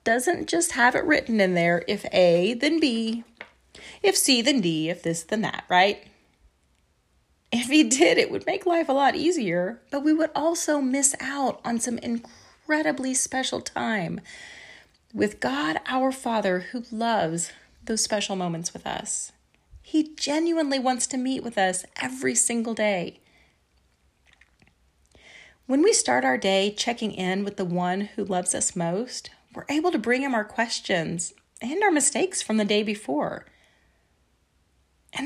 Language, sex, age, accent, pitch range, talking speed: English, female, 30-49, American, 185-280 Hz, 155 wpm